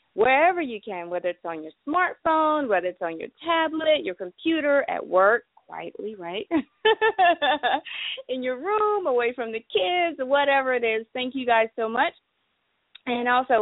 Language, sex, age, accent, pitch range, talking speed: English, female, 30-49, American, 200-310 Hz, 160 wpm